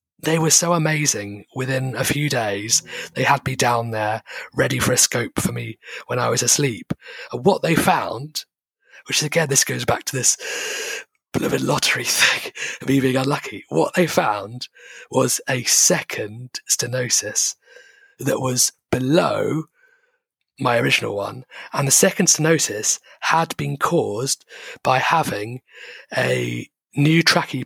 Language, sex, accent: English, male, British